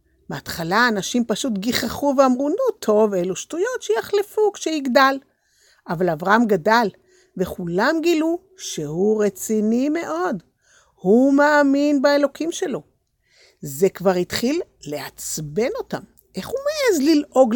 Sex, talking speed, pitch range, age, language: female, 110 wpm, 205-295 Hz, 50-69, Hebrew